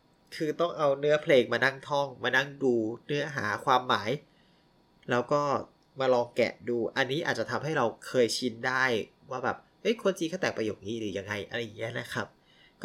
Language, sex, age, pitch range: Thai, male, 20-39, 120-160 Hz